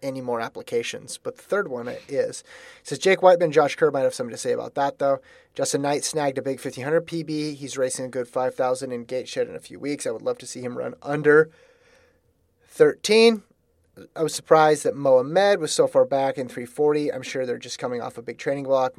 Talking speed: 230 wpm